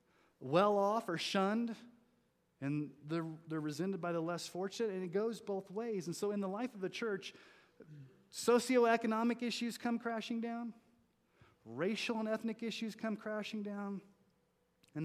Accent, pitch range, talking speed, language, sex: American, 140-185 Hz, 150 wpm, English, male